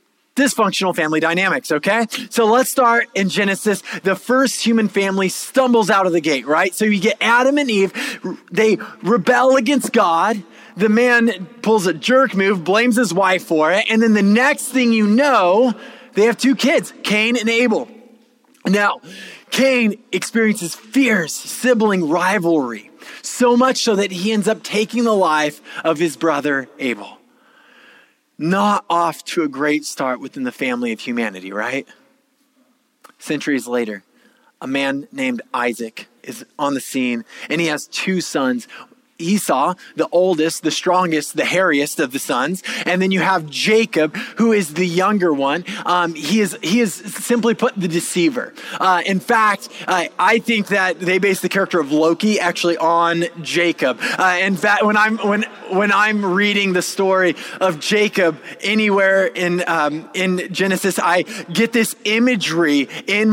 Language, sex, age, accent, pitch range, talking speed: English, male, 20-39, American, 170-230 Hz, 160 wpm